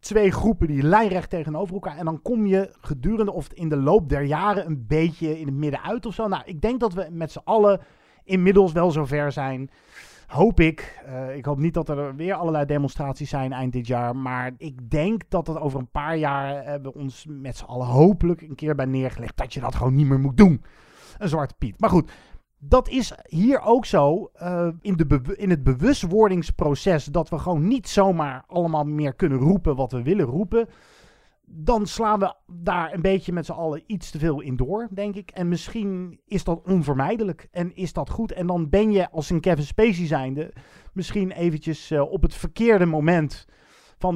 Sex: male